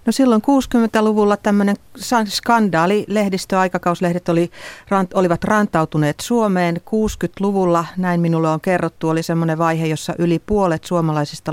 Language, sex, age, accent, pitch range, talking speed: Finnish, female, 40-59, native, 150-180 Hz, 115 wpm